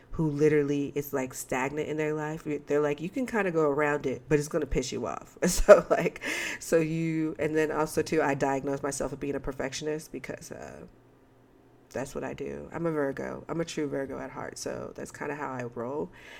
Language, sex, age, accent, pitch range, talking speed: English, female, 40-59, American, 130-155 Hz, 225 wpm